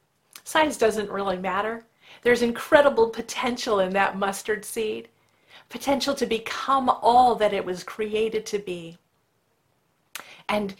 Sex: female